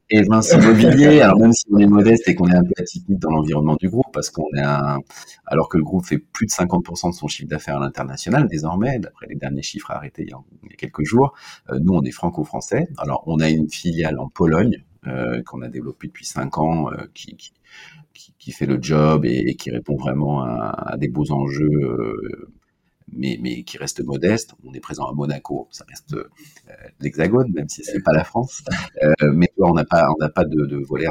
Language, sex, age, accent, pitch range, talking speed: French, male, 40-59, French, 70-100 Hz, 230 wpm